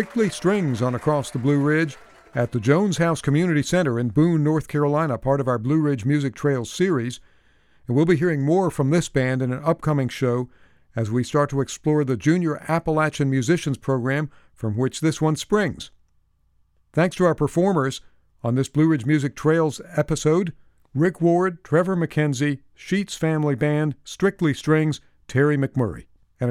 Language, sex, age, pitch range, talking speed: English, male, 50-69, 125-160 Hz, 170 wpm